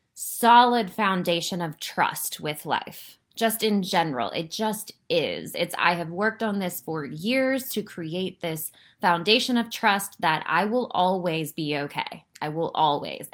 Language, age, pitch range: English, 20-39, 165-210 Hz